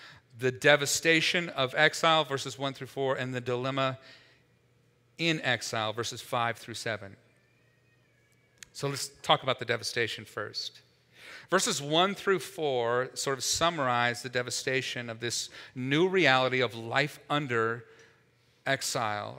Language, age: English, 40-59